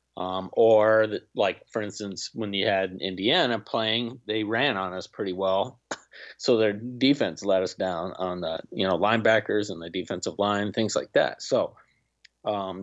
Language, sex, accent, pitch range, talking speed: English, male, American, 95-120 Hz, 170 wpm